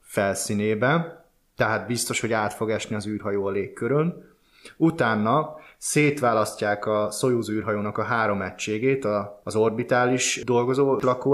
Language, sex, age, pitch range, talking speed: Hungarian, male, 20-39, 110-140 Hz, 120 wpm